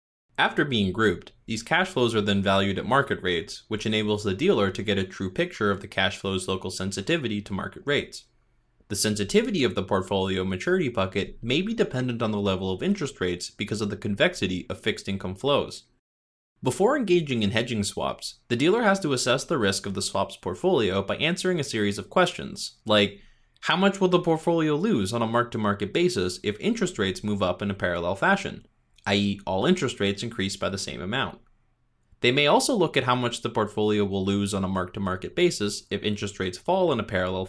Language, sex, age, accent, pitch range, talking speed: English, male, 20-39, American, 95-130 Hz, 205 wpm